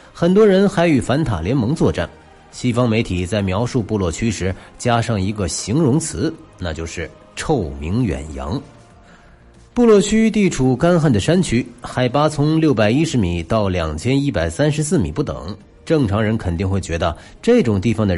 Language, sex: Chinese, male